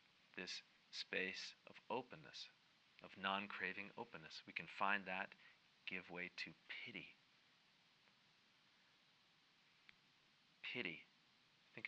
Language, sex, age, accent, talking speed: English, male, 40-59, American, 85 wpm